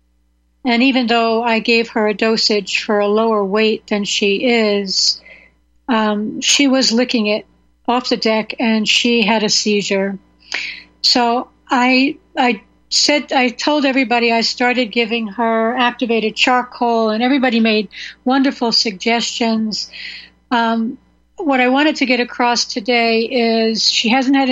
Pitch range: 210-250 Hz